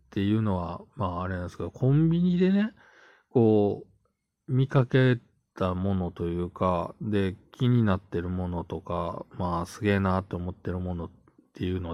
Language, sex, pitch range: Japanese, male, 95-135 Hz